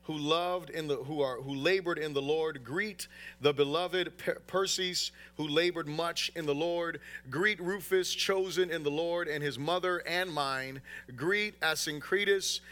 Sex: male